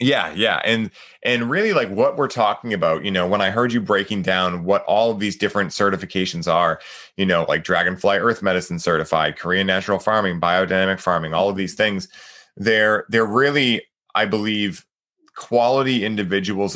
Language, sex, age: English, male, 20-39